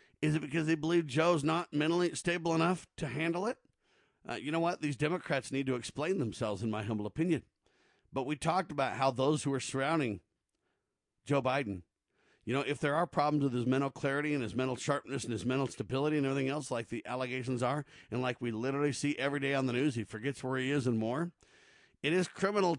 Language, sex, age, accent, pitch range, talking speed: English, male, 50-69, American, 130-150 Hz, 220 wpm